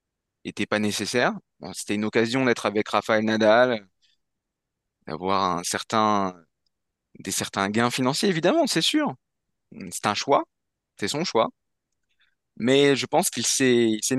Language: French